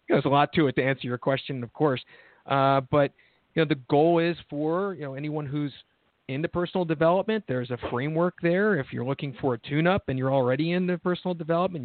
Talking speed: 215 wpm